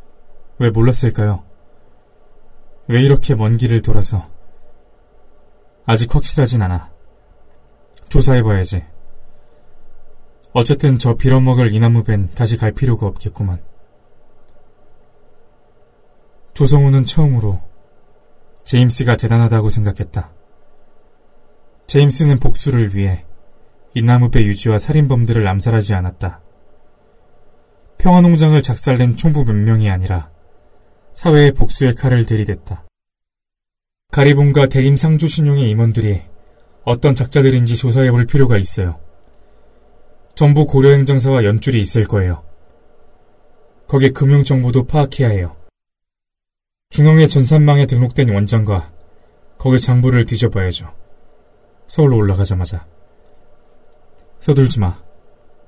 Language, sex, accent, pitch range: Korean, male, native, 100-140 Hz